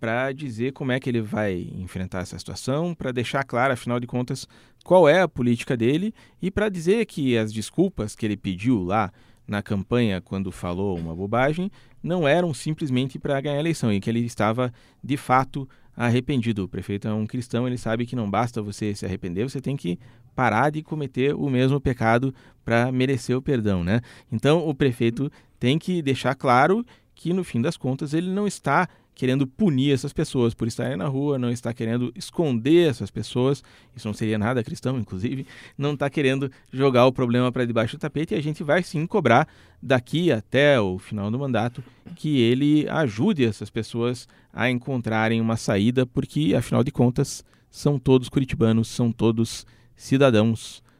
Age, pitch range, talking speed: 40-59, 115-140 Hz, 180 wpm